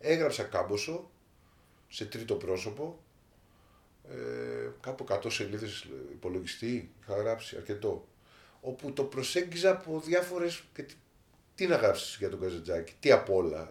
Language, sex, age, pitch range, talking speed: Greek, male, 30-49, 115-175 Hz, 115 wpm